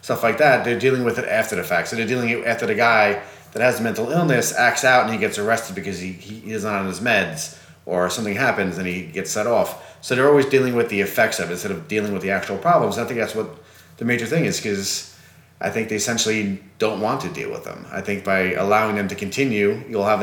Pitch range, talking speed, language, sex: 95-115 Hz, 260 wpm, English, male